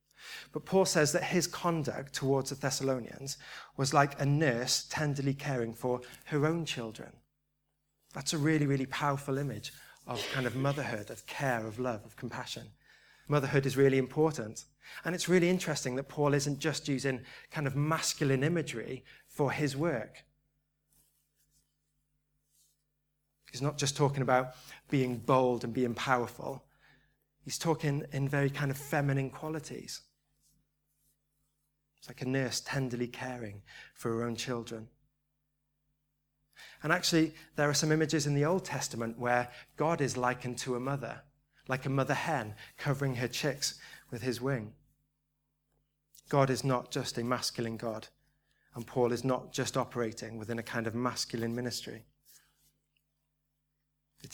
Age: 30-49